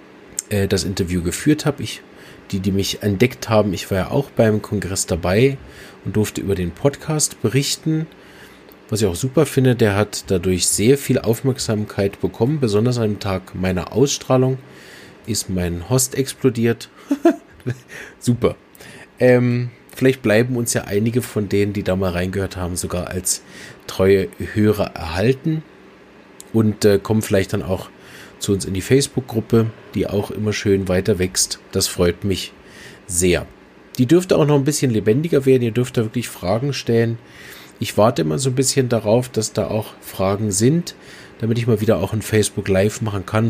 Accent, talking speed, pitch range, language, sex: German, 165 wpm, 95-125 Hz, German, male